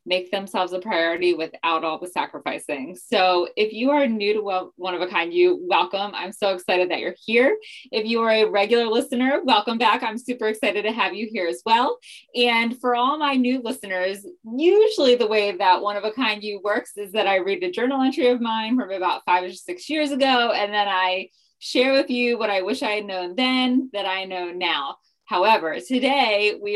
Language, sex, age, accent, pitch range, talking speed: English, female, 20-39, American, 200-255 Hz, 215 wpm